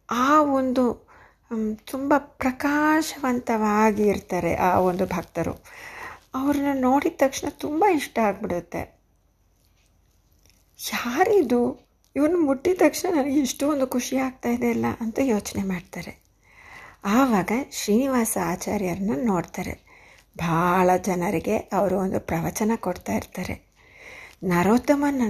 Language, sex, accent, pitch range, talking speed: Kannada, female, native, 180-255 Hz, 95 wpm